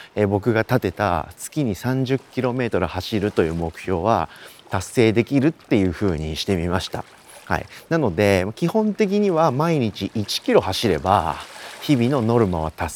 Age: 40-59